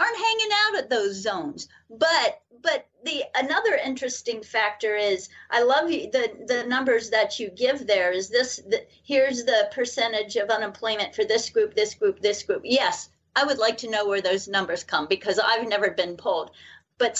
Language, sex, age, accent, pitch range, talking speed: English, female, 40-59, American, 225-295 Hz, 185 wpm